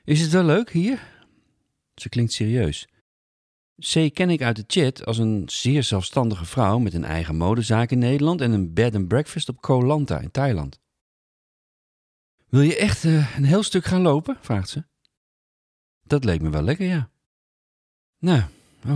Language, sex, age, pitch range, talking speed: Dutch, male, 40-59, 95-145 Hz, 165 wpm